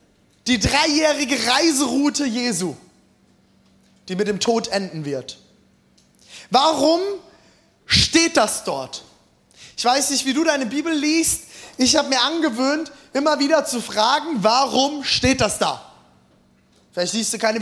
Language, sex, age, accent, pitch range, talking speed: German, male, 20-39, German, 200-280 Hz, 130 wpm